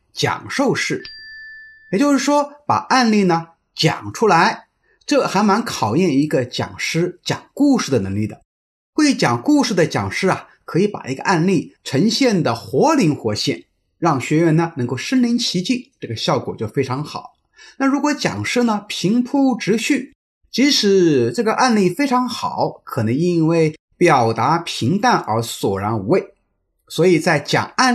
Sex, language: male, Chinese